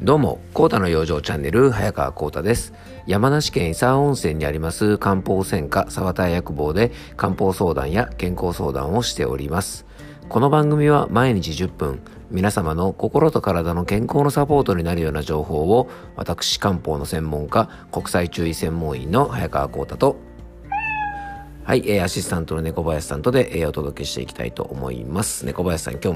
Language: Japanese